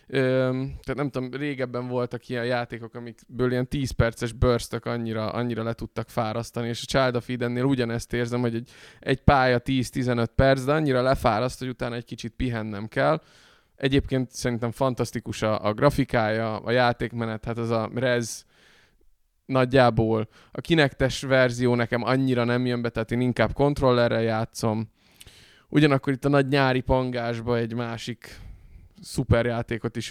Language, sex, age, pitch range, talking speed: Hungarian, male, 20-39, 115-130 Hz, 150 wpm